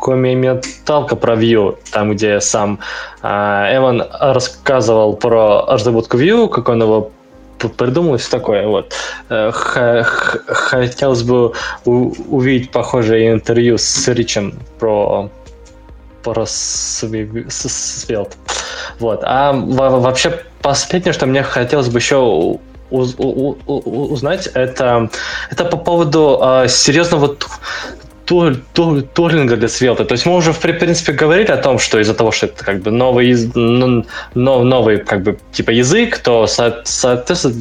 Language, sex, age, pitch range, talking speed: Russian, male, 20-39, 120-150 Hz, 115 wpm